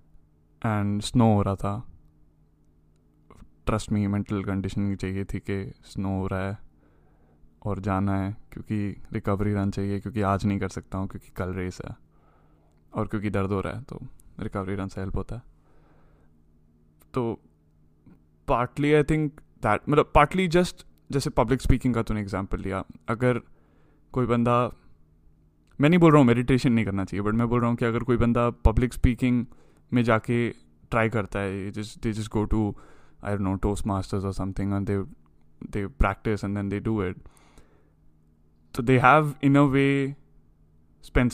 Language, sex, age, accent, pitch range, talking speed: English, male, 20-39, Indian, 80-115 Hz, 150 wpm